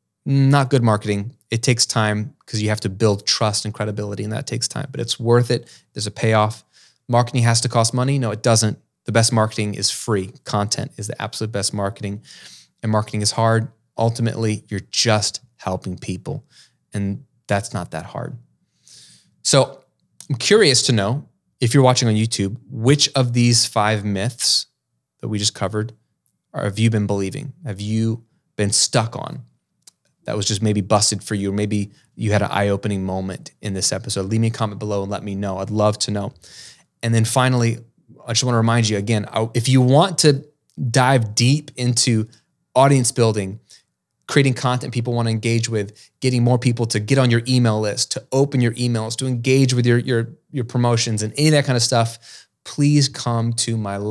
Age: 20-39